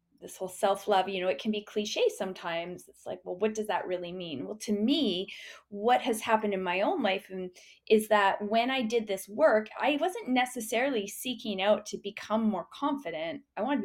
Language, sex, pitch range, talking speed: English, female, 180-220 Hz, 205 wpm